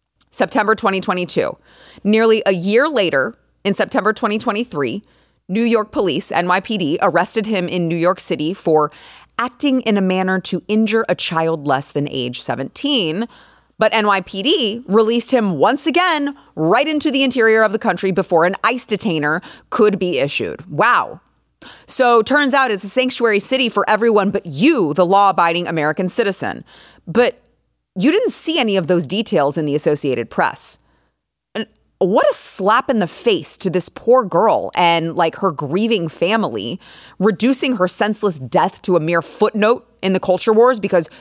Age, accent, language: 30-49, American, English